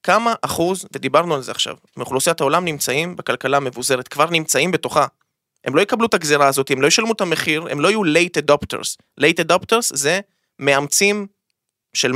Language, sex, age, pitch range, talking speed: Hebrew, male, 20-39, 130-165 Hz, 170 wpm